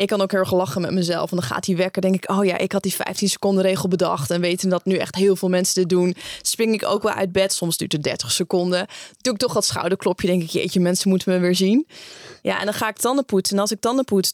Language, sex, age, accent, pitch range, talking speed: Dutch, female, 20-39, Dutch, 185-210 Hz, 295 wpm